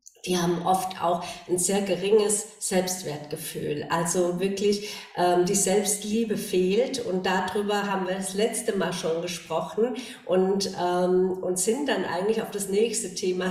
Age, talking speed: 50-69, 145 wpm